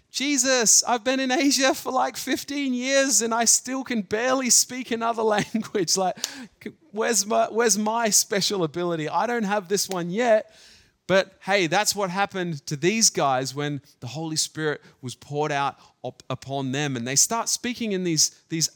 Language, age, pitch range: Japanese, 30-49, 155-235 Hz